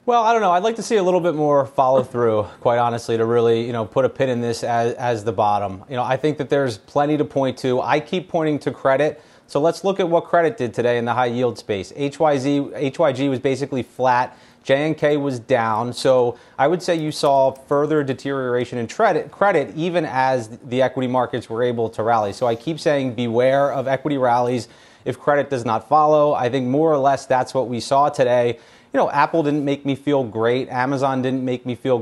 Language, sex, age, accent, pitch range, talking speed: English, male, 30-49, American, 120-150 Hz, 225 wpm